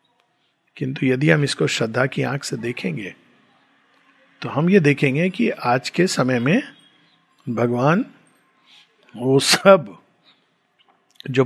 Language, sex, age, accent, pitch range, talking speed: Hindi, male, 50-69, native, 130-170 Hz, 115 wpm